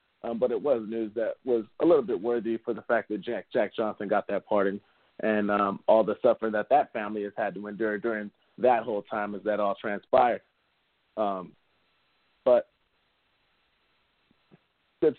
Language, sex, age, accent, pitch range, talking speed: English, male, 30-49, American, 105-120 Hz, 175 wpm